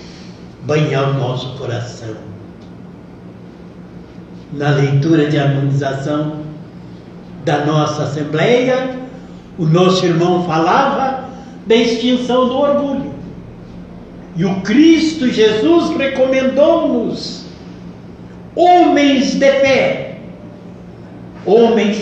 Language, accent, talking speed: Portuguese, Brazilian, 75 wpm